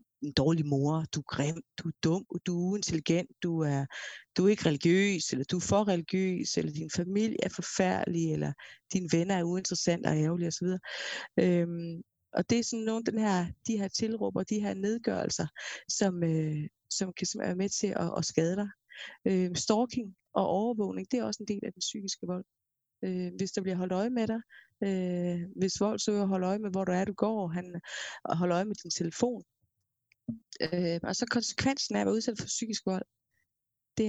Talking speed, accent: 195 wpm, native